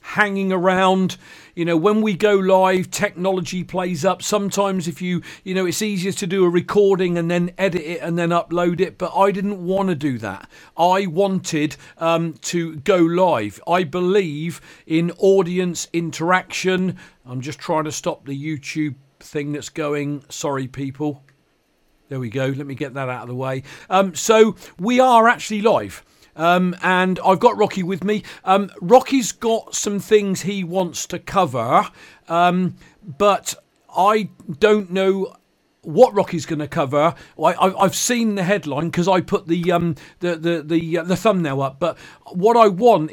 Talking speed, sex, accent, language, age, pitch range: 170 wpm, male, British, English, 40-59, 160-195 Hz